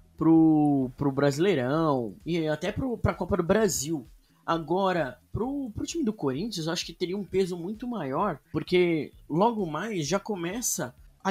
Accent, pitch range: Brazilian, 125-180 Hz